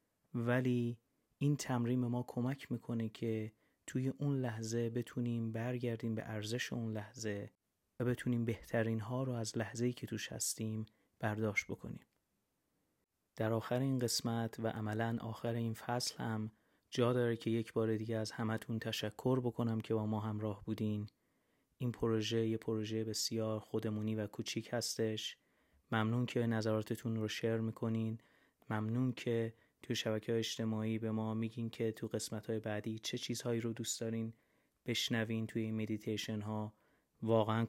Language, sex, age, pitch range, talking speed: Persian, male, 30-49, 110-120 Hz, 145 wpm